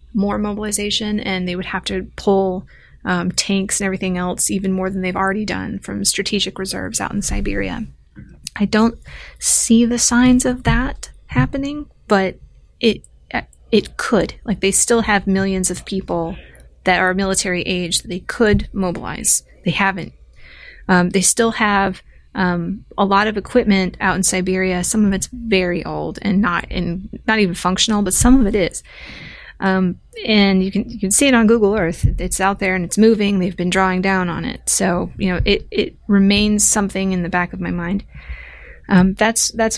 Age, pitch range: 30-49, 185-210 Hz